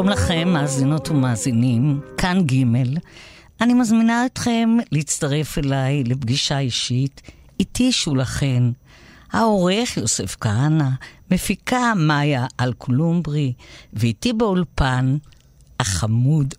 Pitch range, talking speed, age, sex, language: 130-210 Hz, 85 wpm, 50-69, female, Hebrew